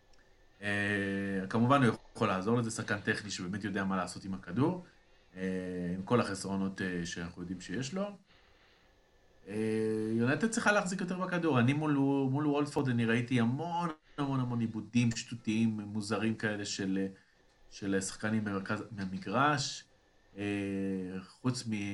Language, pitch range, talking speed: Hebrew, 95-125 Hz, 135 wpm